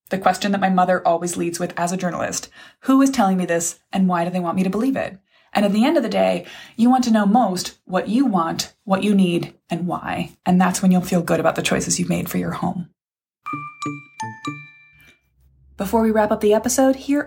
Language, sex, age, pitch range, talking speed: English, female, 20-39, 180-240 Hz, 230 wpm